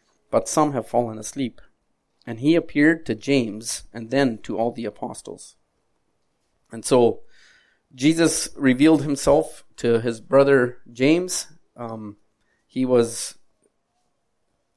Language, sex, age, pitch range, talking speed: English, male, 30-49, 115-140 Hz, 115 wpm